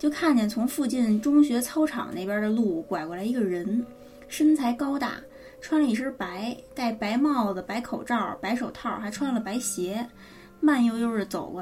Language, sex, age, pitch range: Chinese, female, 20-39, 200-265 Hz